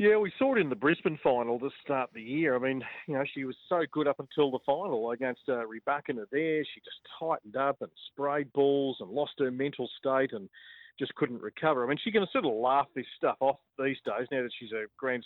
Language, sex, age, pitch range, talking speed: English, male, 40-59, 130-155 Hz, 240 wpm